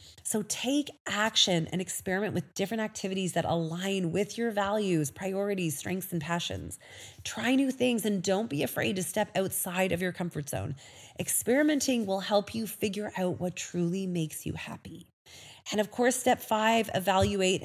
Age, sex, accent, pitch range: 30-49, female, American, 170-230 Hz